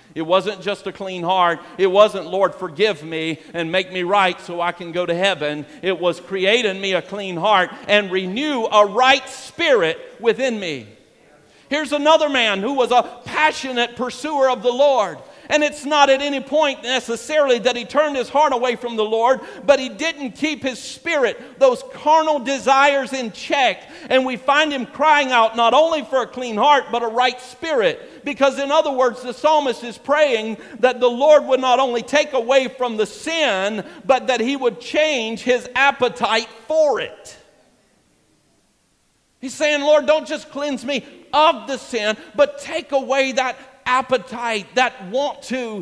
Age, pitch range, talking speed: 50-69, 185-275 Hz, 180 wpm